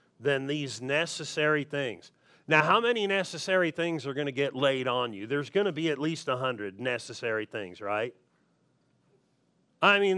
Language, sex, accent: English, male, American